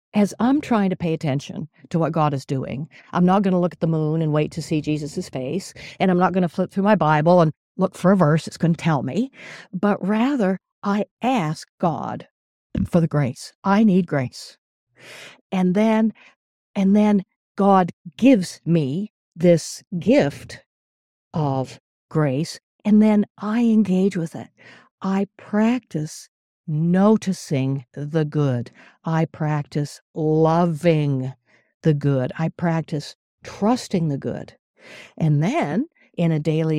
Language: English